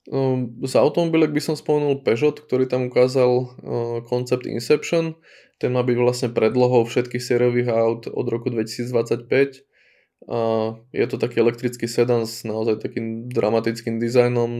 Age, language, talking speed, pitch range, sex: 20-39, Slovak, 130 wpm, 115-125 Hz, male